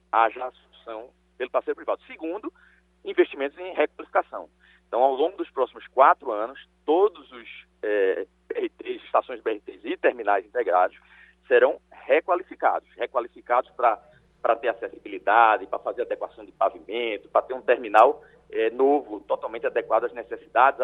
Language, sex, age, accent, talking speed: Portuguese, male, 40-59, Brazilian, 130 wpm